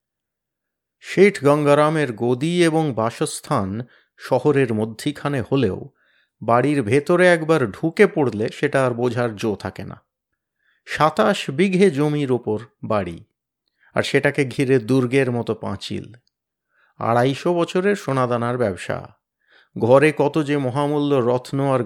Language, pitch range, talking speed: Bengali, 120-155 Hz, 110 wpm